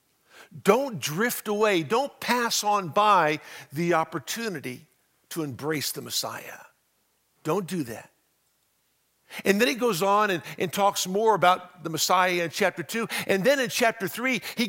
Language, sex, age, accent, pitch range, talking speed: English, male, 50-69, American, 160-220 Hz, 150 wpm